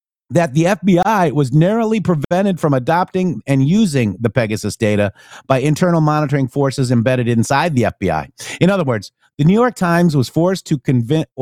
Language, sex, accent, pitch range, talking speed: English, male, American, 145-180 Hz, 170 wpm